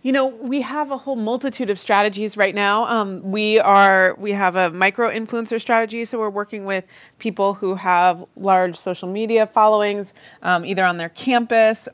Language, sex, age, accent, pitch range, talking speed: English, female, 30-49, American, 165-205 Hz, 185 wpm